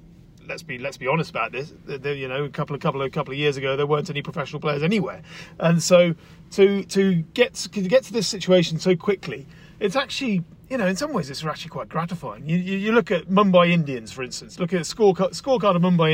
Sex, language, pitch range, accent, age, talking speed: male, English, 160-185 Hz, British, 40-59, 240 wpm